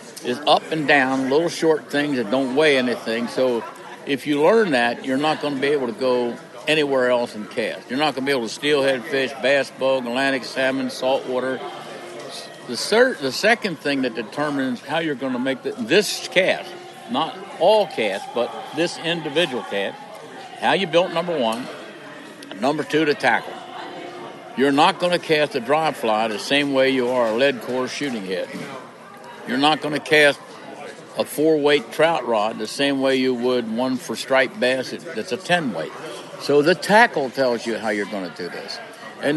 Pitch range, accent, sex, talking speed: 130-155 Hz, American, male, 190 wpm